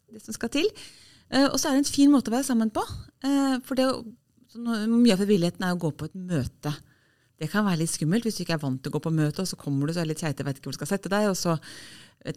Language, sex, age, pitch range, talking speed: English, female, 30-49, 155-230 Hz, 290 wpm